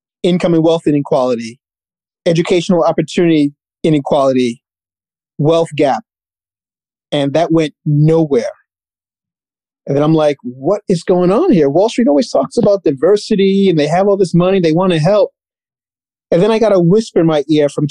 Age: 30-49